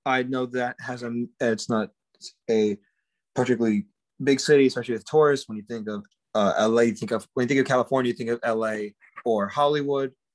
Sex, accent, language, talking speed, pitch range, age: male, American, English, 195 wpm, 110-135 Hz, 20-39